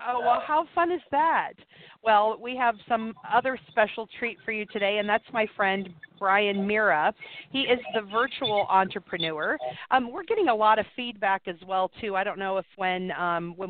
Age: 40-59